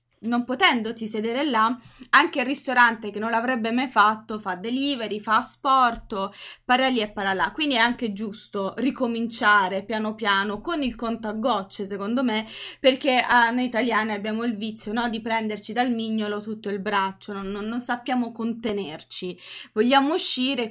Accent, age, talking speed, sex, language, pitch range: native, 20-39, 160 wpm, female, Italian, 210-250 Hz